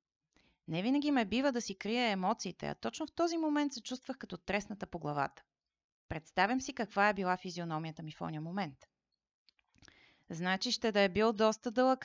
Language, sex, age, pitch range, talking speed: Bulgarian, female, 30-49, 170-230 Hz, 180 wpm